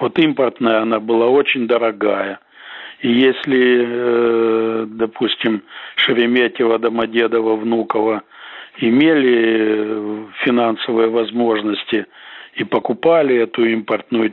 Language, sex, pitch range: Russian, male, 110-135 Hz